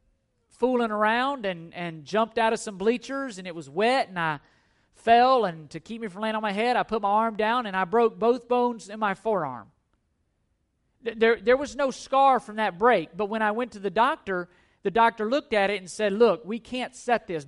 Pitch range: 175-235 Hz